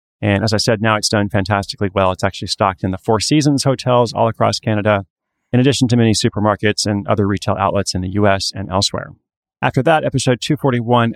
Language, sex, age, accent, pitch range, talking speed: English, male, 30-49, American, 100-125 Hz, 205 wpm